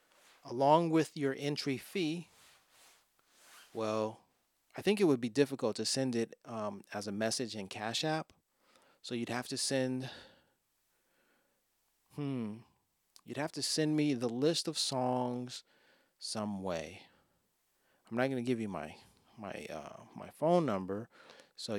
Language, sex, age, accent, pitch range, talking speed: English, male, 30-49, American, 110-140 Hz, 145 wpm